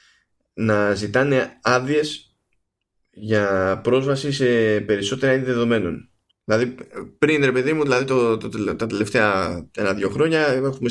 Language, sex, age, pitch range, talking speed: Greek, male, 20-39, 105-135 Hz, 125 wpm